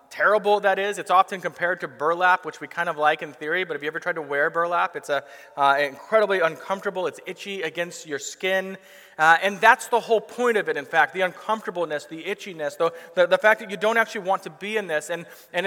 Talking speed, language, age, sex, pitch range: 240 wpm, English, 30-49, male, 165-205 Hz